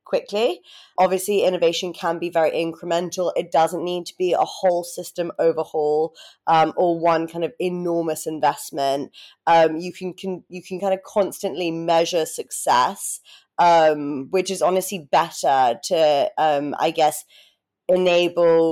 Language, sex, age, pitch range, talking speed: English, female, 20-39, 160-185 Hz, 140 wpm